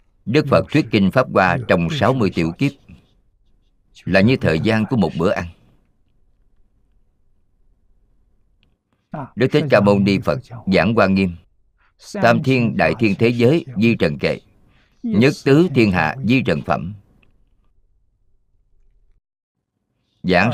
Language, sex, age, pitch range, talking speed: Vietnamese, male, 50-69, 90-115 Hz, 130 wpm